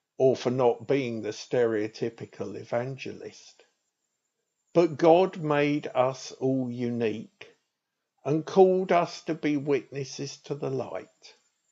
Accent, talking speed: British, 115 wpm